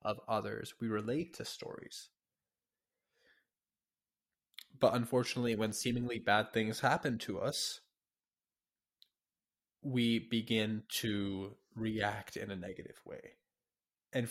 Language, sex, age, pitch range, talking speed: English, male, 20-39, 105-125 Hz, 100 wpm